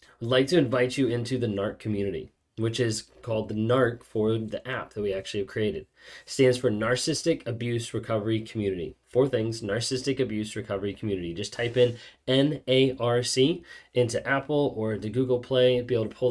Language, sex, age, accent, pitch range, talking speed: English, male, 20-39, American, 110-130 Hz, 175 wpm